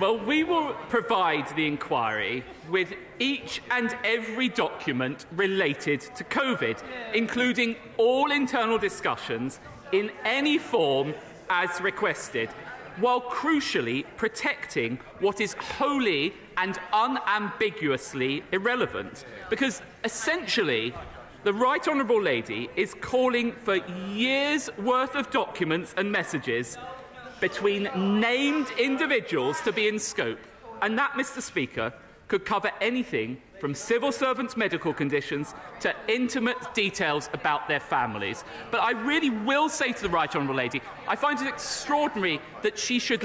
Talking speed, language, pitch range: 125 wpm, English, 195-265 Hz